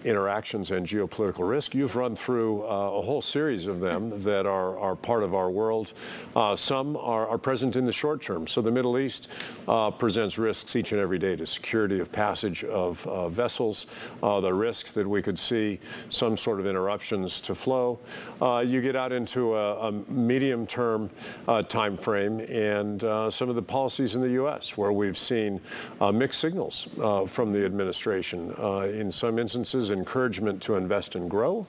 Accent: American